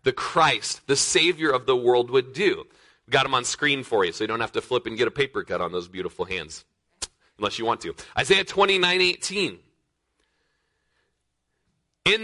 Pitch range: 150-205 Hz